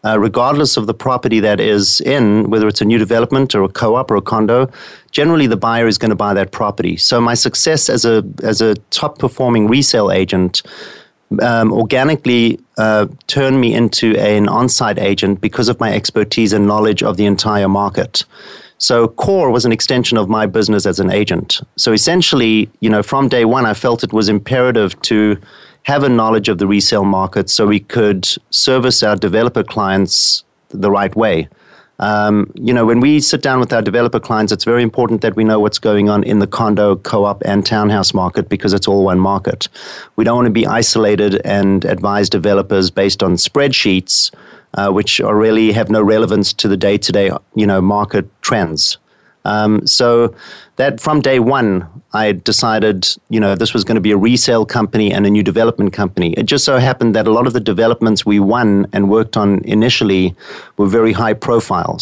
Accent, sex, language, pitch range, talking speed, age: German, male, English, 100-120 Hz, 195 wpm, 30-49